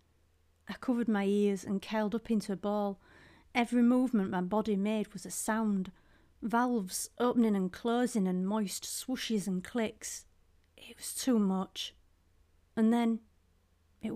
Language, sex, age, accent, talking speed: English, female, 40-59, British, 145 wpm